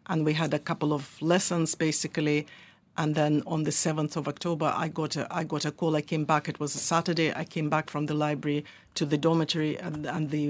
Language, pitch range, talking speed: English, 150-165 Hz, 235 wpm